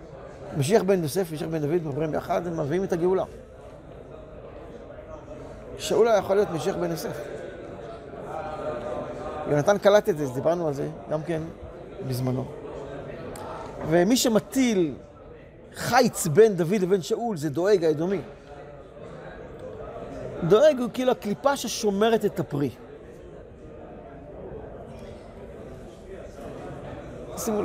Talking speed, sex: 100 wpm, male